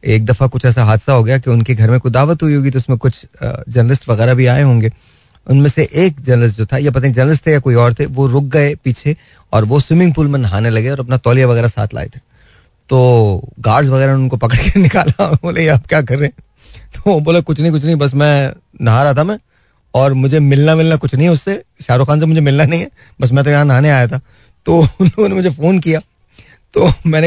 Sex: male